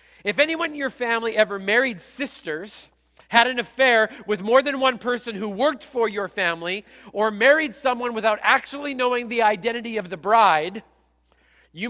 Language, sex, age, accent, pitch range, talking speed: English, male, 40-59, American, 155-240 Hz, 165 wpm